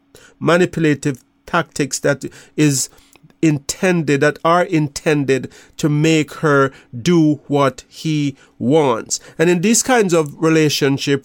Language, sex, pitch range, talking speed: English, male, 140-165 Hz, 110 wpm